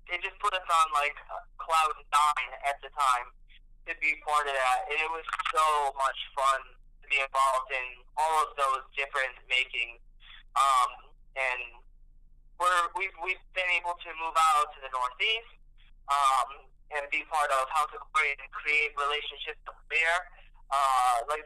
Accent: American